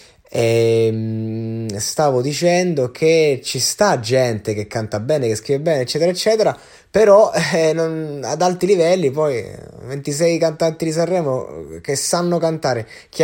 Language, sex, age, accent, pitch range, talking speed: Italian, male, 20-39, native, 115-155 Hz, 135 wpm